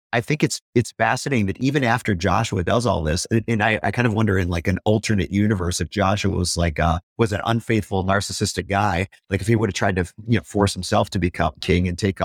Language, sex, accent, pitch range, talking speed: English, male, American, 90-115 Hz, 240 wpm